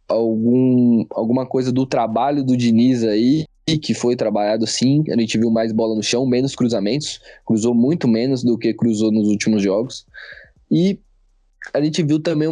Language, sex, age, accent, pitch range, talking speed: Portuguese, male, 20-39, Brazilian, 110-150 Hz, 165 wpm